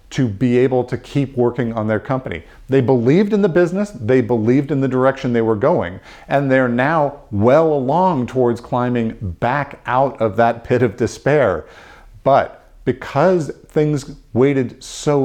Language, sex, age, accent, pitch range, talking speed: English, male, 50-69, American, 115-150 Hz, 160 wpm